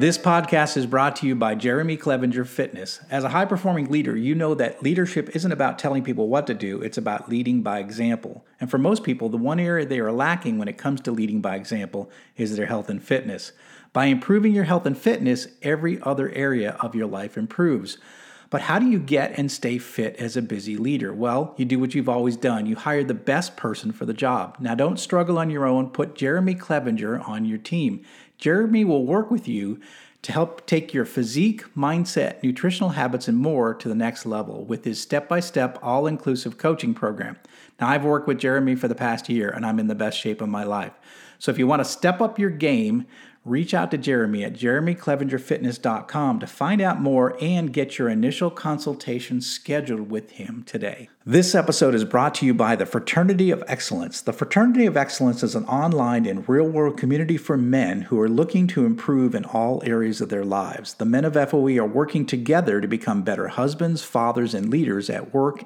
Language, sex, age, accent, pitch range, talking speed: English, male, 40-59, American, 120-175 Hz, 205 wpm